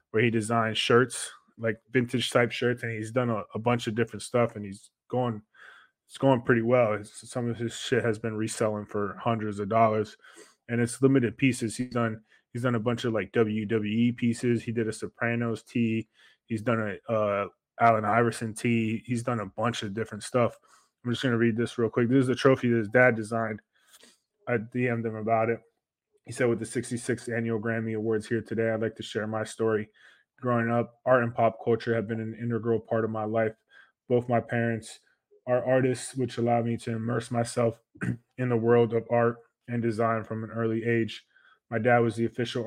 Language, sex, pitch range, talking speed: English, male, 110-120 Hz, 205 wpm